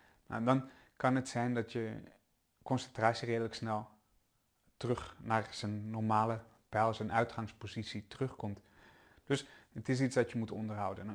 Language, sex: Dutch, male